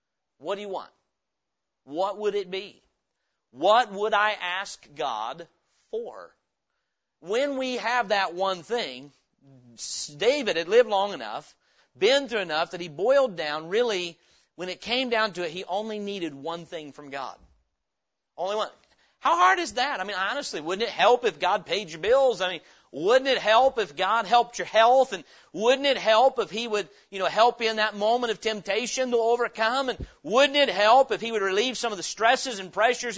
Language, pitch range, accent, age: English, 190-255 Hz, American, 40-59